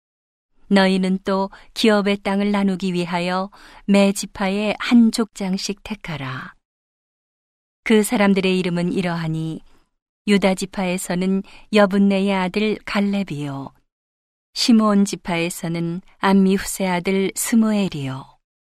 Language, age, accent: Korean, 40-59, native